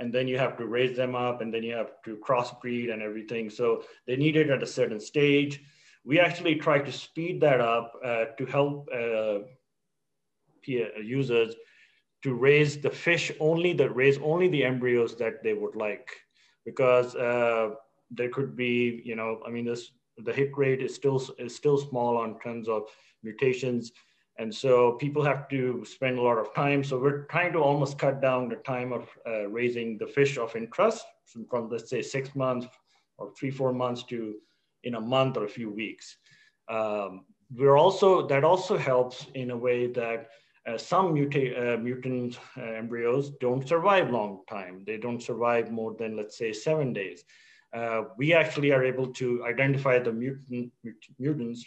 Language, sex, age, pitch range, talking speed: English, male, 30-49, 115-140 Hz, 180 wpm